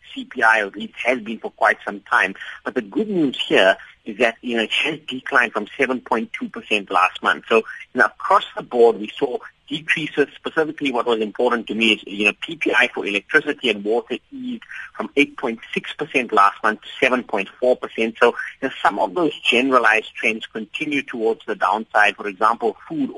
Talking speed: 180 wpm